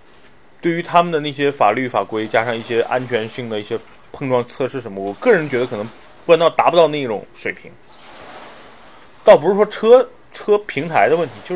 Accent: native